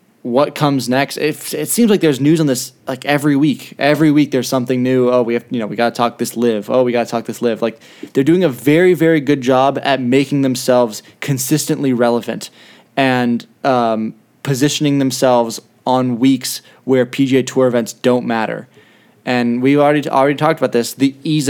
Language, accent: English, American